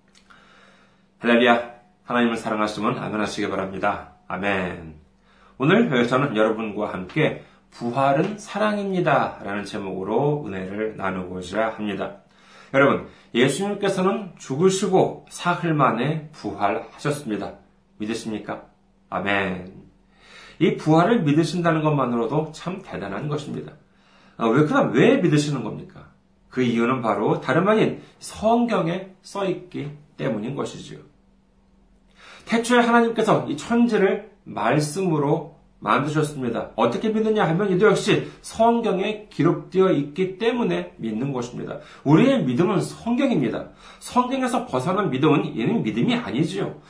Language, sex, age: Korean, male, 40-59